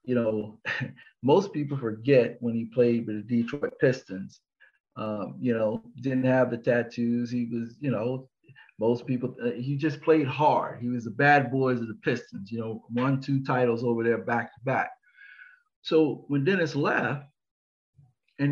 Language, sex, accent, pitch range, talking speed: English, male, American, 120-155 Hz, 170 wpm